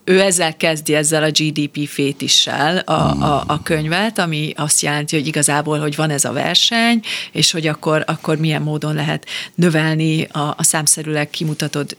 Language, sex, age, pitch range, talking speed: Hungarian, female, 40-59, 155-180 Hz, 160 wpm